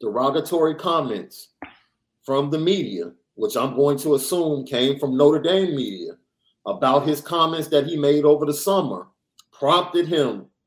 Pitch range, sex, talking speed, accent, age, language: 125-175 Hz, male, 145 wpm, American, 40-59, English